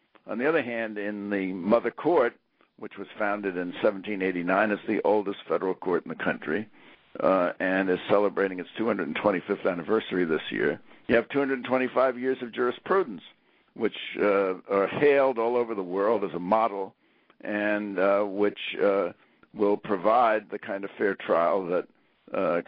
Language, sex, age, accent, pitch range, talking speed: English, male, 60-79, American, 95-115 Hz, 160 wpm